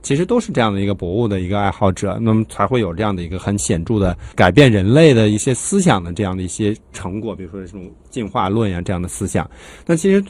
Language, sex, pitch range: Chinese, male, 95-135 Hz